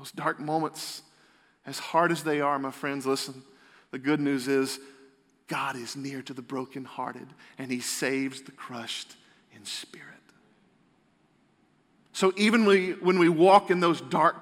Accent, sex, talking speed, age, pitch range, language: American, male, 150 wpm, 40-59, 140-195 Hz, English